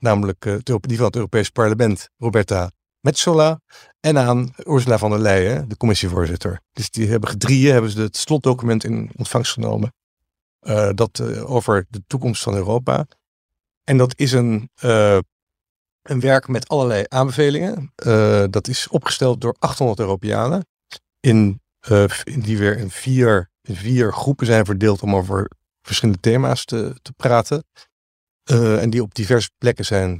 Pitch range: 100-125 Hz